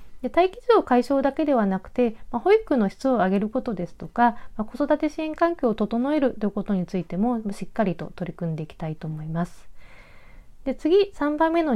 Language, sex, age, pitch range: Japanese, female, 40-59, 180-280 Hz